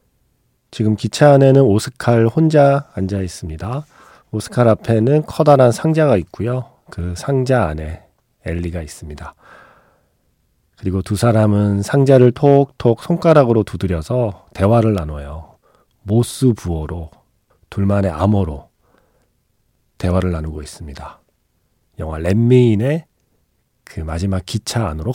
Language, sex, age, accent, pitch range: Korean, male, 40-59, native, 90-130 Hz